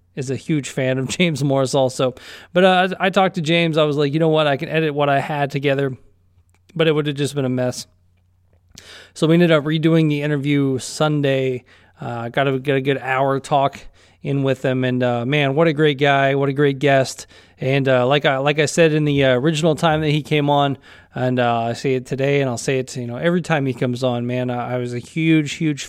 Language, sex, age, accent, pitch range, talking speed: English, male, 20-39, American, 130-150 Hz, 245 wpm